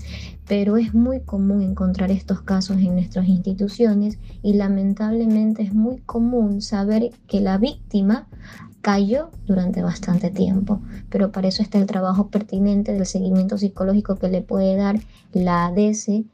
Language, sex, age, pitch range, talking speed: Spanish, male, 20-39, 190-215 Hz, 145 wpm